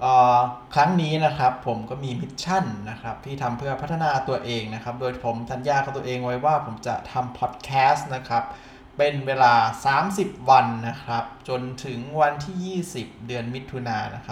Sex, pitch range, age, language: male, 120-160 Hz, 20-39, Thai